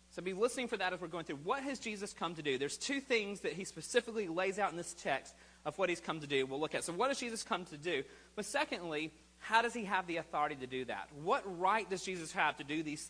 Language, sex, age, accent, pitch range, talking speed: English, male, 30-49, American, 145-215 Hz, 280 wpm